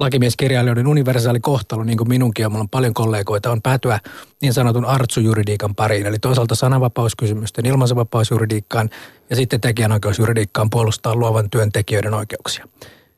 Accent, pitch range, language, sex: native, 115-135 Hz, Finnish, male